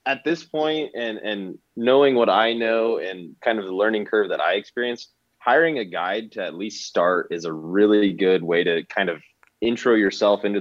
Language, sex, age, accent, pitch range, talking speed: English, male, 20-39, American, 95-115 Hz, 205 wpm